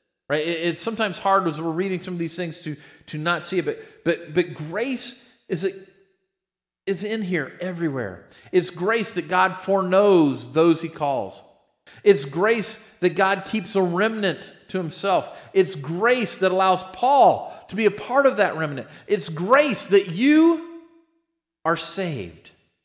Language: English